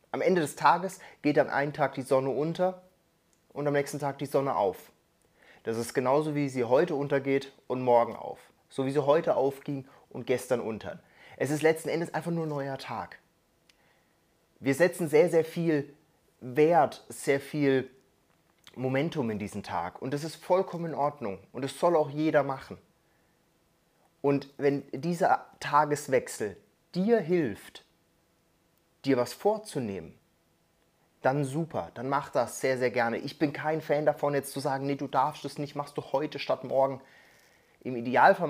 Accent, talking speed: German, 165 wpm